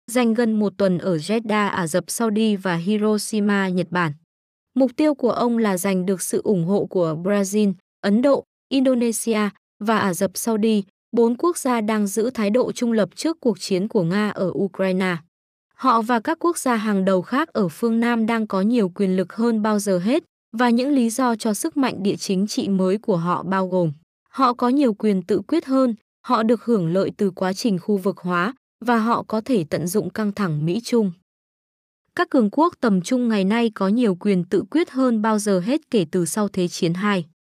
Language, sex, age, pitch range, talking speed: Vietnamese, female, 20-39, 190-245 Hz, 210 wpm